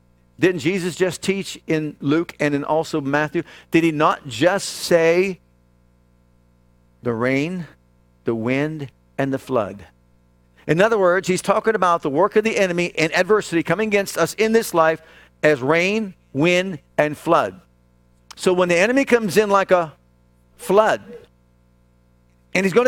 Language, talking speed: English, 150 wpm